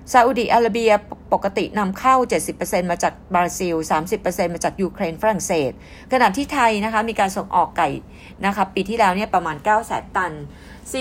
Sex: female